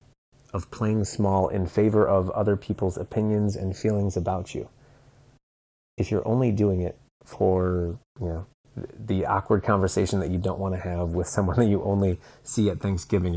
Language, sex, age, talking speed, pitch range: English, male, 30-49, 170 wpm, 90-115 Hz